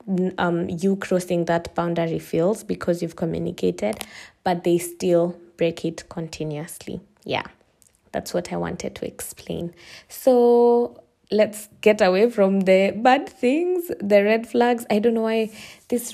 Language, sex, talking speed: English, female, 140 wpm